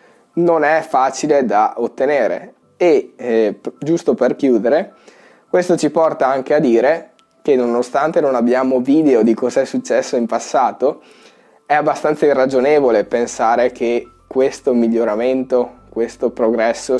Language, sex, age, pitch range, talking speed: Italian, male, 20-39, 120-155 Hz, 125 wpm